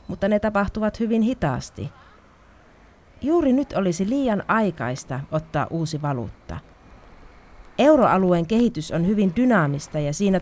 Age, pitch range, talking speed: 30-49, 150-195 Hz, 115 wpm